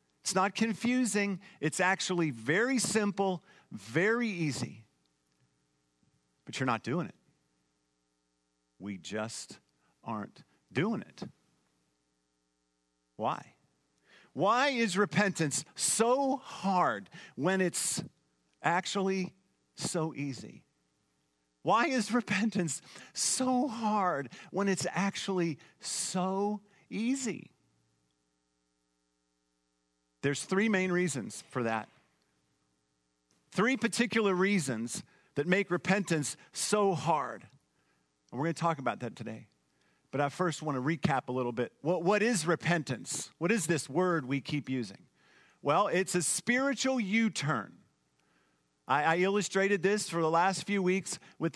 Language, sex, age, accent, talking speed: English, male, 50-69, American, 115 wpm